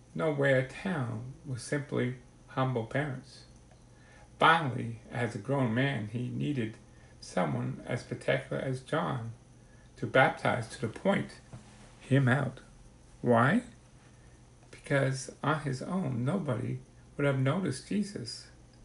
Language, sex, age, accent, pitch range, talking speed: English, male, 60-79, American, 120-140 Hz, 110 wpm